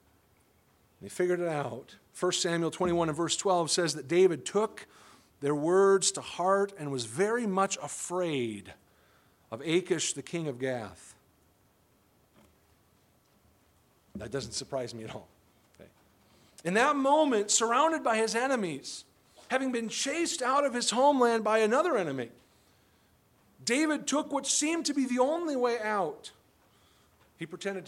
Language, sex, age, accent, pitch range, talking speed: English, male, 40-59, American, 135-215 Hz, 140 wpm